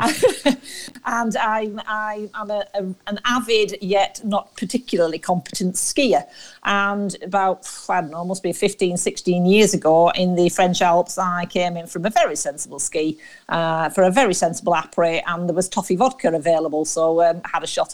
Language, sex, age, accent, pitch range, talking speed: English, female, 50-69, British, 175-210 Hz, 175 wpm